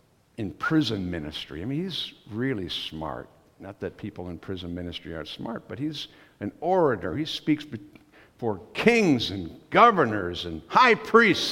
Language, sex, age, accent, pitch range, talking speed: English, male, 60-79, American, 100-130 Hz, 150 wpm